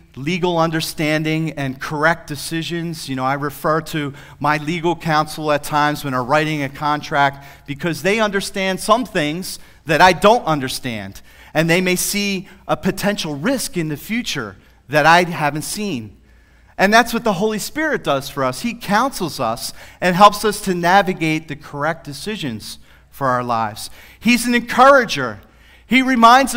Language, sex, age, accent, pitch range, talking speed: English, male, 40-59, American, 130-190 Hz, 160 wpm